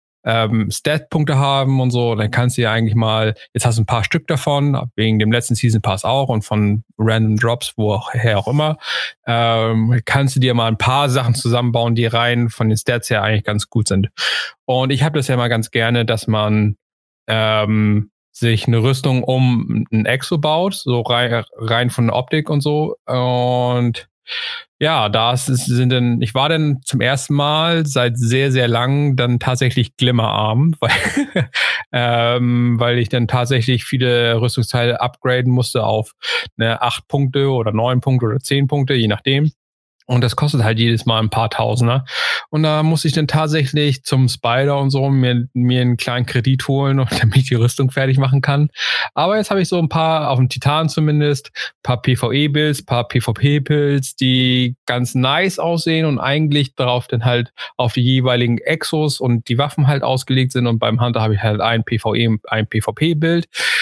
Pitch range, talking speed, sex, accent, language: 115-140 Hz, 175 wpm, male, German, German